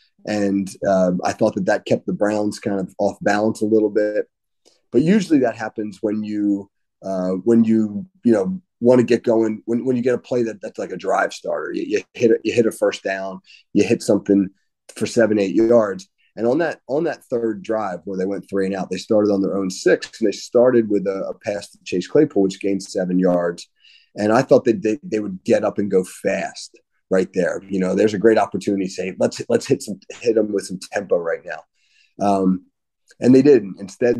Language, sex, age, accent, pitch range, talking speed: English, male, 30-49, American, 95-115 Hz, 230 wpm